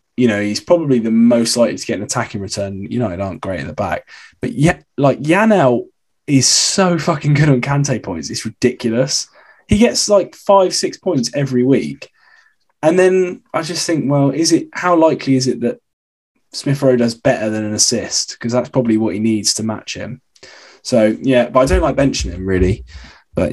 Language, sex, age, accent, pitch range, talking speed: English, male, 20-39, British, 105-180 Hz, 205 wpm